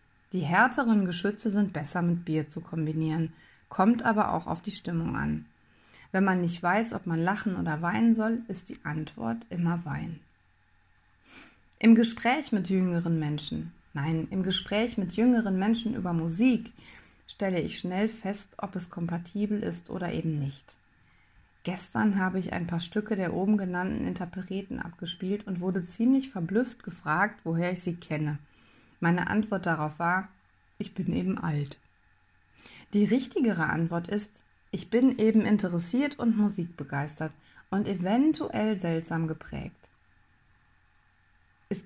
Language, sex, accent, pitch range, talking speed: German, female, German, 165-210 Hz, 140 wpm